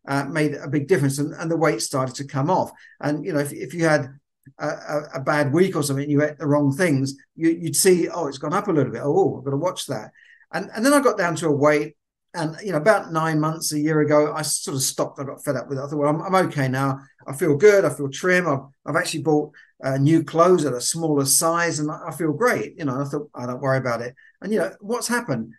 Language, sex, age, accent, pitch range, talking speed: English, male, 50-69, British, 140-175 Hz, 280 wpm